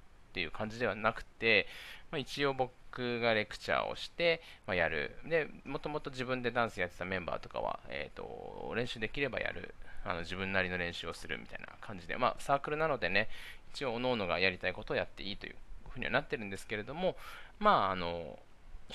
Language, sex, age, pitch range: Japanese, male, 20-39, 90-140 Hz